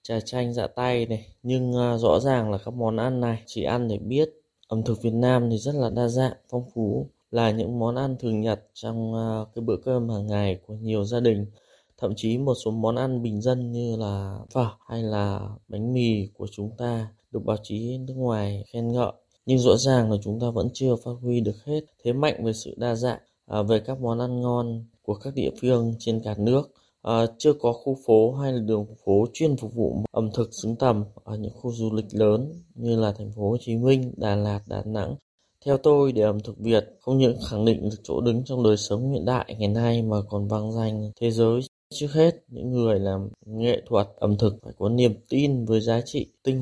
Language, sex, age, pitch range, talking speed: Vietnamese, male, 20-39, 110-125 Hz, 225 wpm